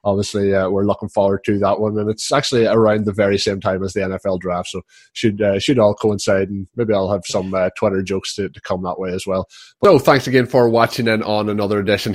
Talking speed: 250 wpm